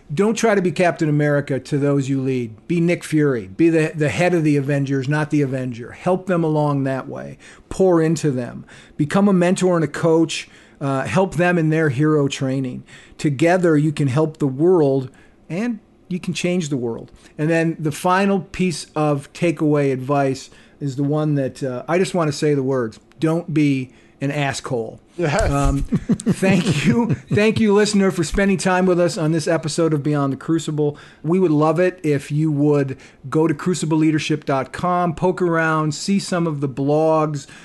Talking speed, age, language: 185 wpm, 50-69, English